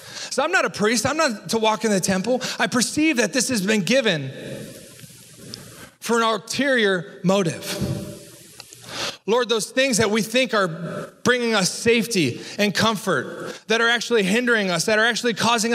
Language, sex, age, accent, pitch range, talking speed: English, male, 30-49, American, 175-230 Hz, 170 wpm